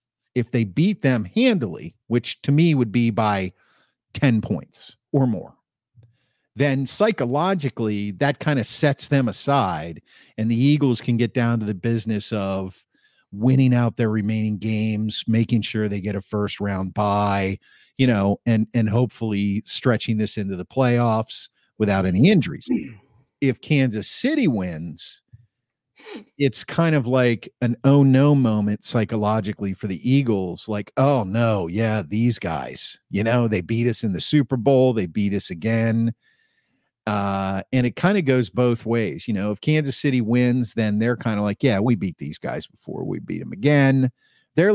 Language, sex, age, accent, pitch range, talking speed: English, male, 50-69, American, 105-130 Hz, 165 wpm